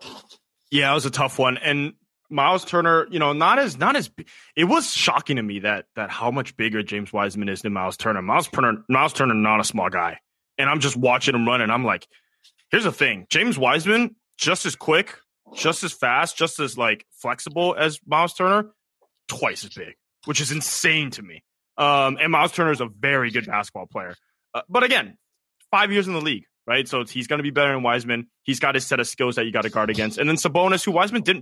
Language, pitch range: English, 120-165 Hz